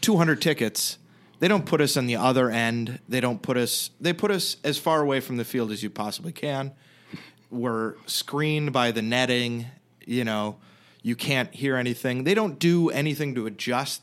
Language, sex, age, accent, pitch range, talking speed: English, male, 30-49, American, 110-140 Hz, 195 wpm